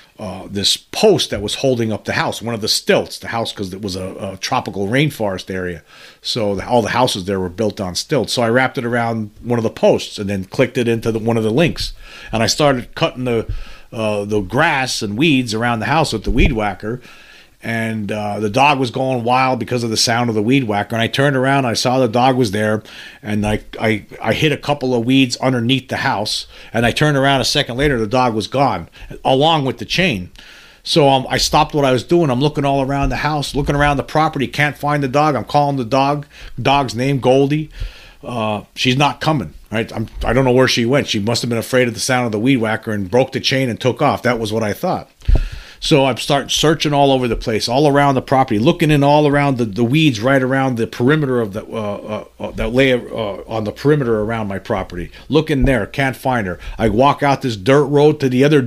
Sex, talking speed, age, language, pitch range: male, 245 wpm, 40-59, English, 110-140 Hz